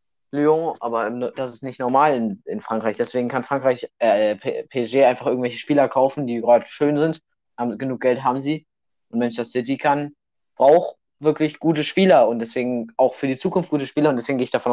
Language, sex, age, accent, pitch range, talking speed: German, male, 20-39, German, 120-155 Hz, 190 wpm